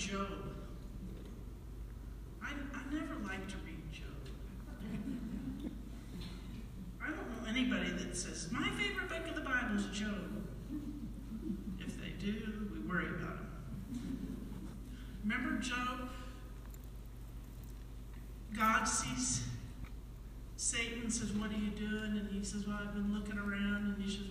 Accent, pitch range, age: American, 195-220 Hz, 50-69